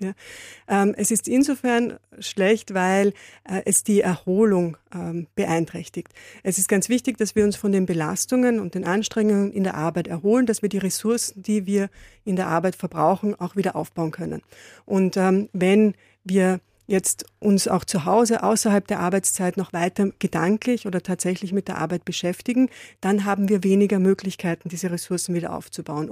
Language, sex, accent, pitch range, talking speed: German, female, German, 180-210 Hz, 160 wpm